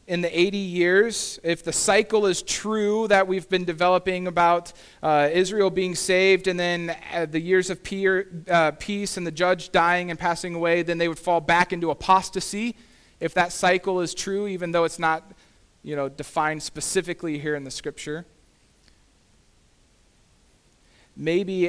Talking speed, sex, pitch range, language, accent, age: 160 wpm, male, 130-175 Hz, English, American, 40-59